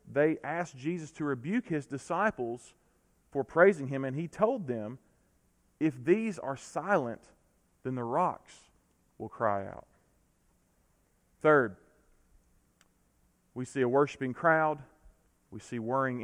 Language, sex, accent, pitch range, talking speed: English, male, American, 125-165 Hz, 125 wpm